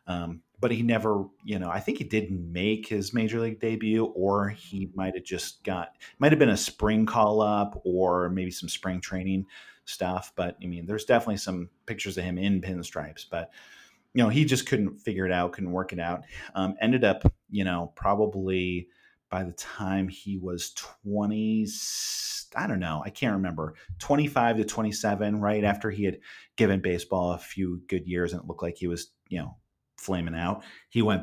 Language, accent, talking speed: English, American, 190 wpm